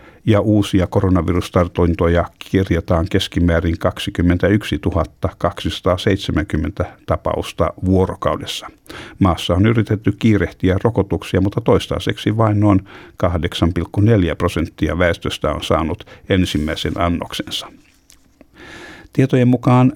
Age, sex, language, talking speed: 60-79, male, Finnish, 80 wpm